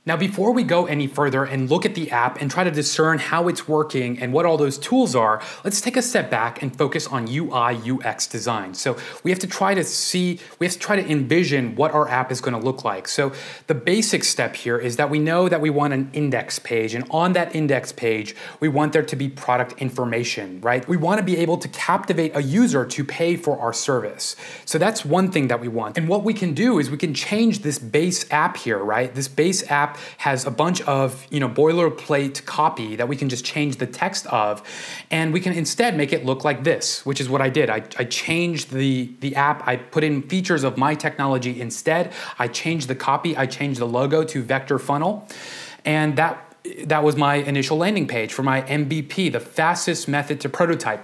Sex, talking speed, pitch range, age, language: male, 225 wpm, 130-165 Hz, 30-49, English